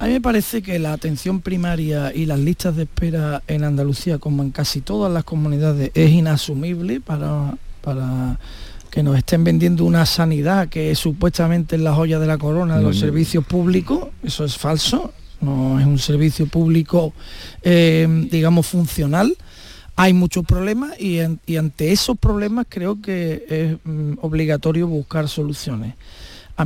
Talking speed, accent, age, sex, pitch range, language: 160 wpm, Spanish, 40-59, male, 150-180 Hz, Spanish